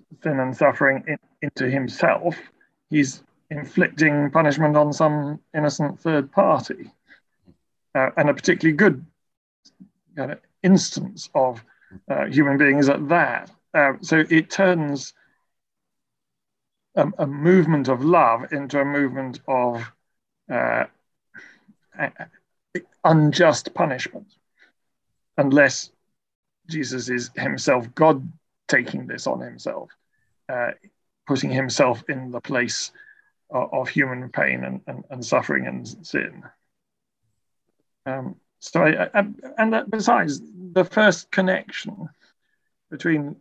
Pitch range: 130-165 Hz